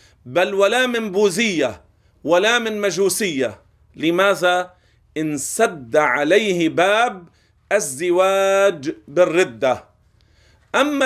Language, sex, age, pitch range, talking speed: Arabic, male, 40-59, 155-210 Hz, 75 wpm